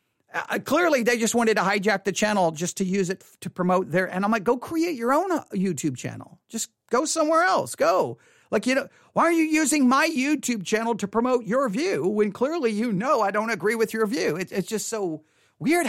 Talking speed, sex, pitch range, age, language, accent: 220 wpm, male, 170-240 Hz, 40-59, English, American